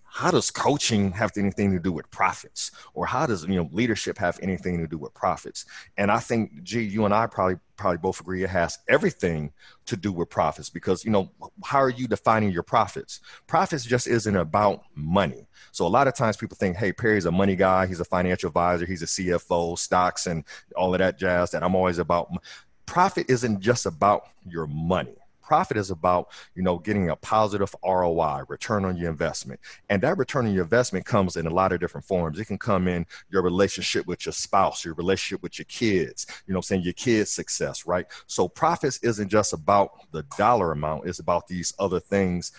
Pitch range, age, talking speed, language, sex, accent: 85-105 Hz, 30-49, 210 wpm, English, male, American